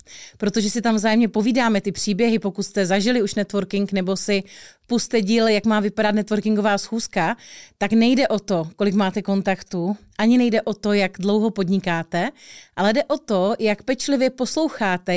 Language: Czech